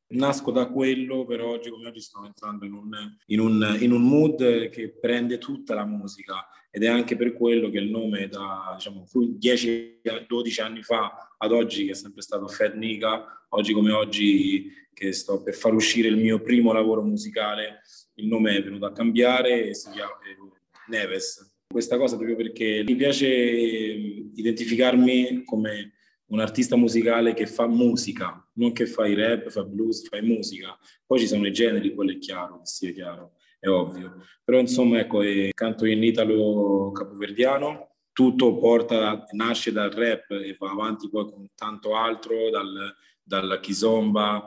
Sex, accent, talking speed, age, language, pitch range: male, native, 165 wpm, 20-39, Italian, 105-120 Hz